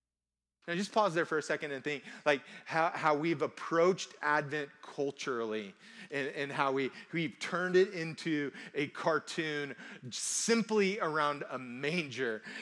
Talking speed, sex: 140 wpm, male